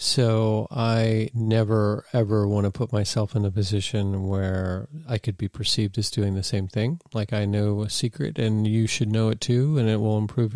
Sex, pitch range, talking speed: male, 105-130 Hz, 205 wpm